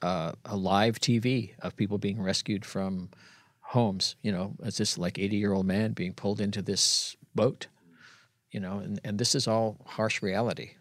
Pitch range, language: 100-115 Hz, English